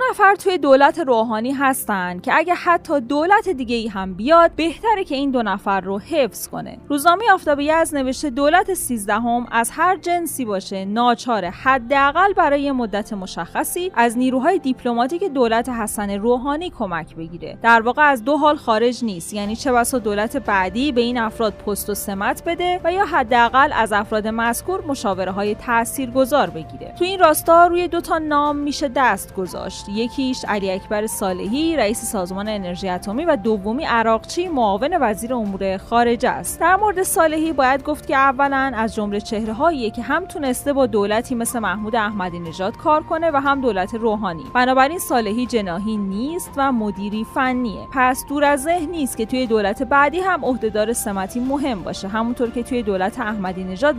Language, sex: Persian, female